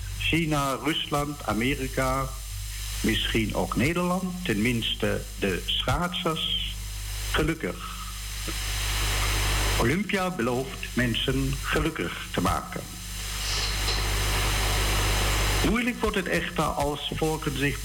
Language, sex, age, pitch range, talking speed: Dutch, male, 60-79, 100-145 Hz, 75 wpm